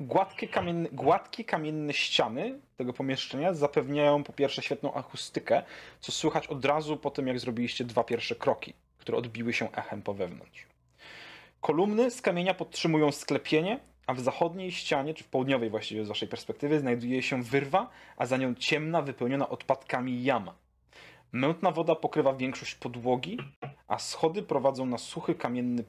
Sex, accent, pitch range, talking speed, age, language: male, native, 115-155 Hz, 150 wpm, 30-49, Polish